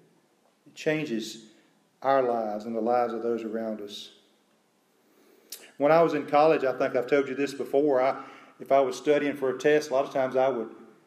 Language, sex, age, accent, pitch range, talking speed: English, male, 40-59, American, 120-155 Hz, 195 wpm